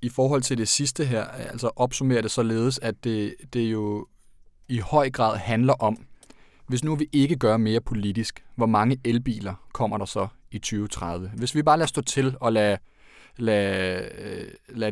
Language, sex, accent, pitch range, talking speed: Danish, male, native, 105-125 Hz, 175 wpm